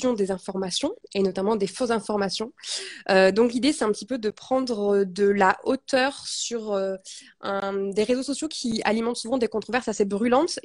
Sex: female